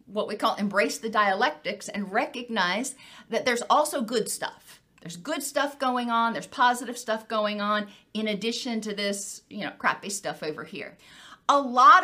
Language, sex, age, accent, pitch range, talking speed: English, female, 40-59, American, 205-255 Hz, 175 wpm